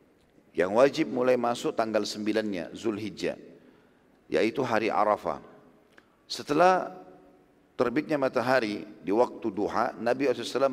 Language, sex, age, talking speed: Indonesian, male, 40-59, 100 wpm